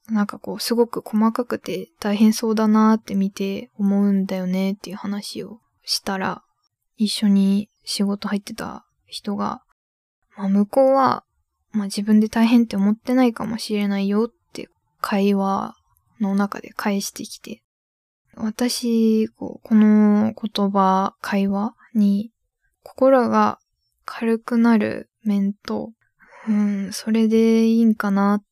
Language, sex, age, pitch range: Japanese, female, 10-29, 200-225 Hz